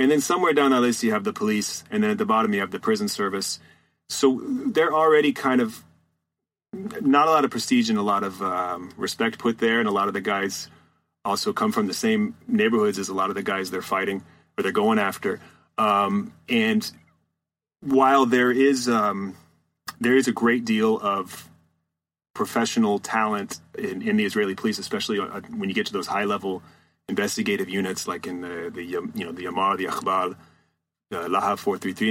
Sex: male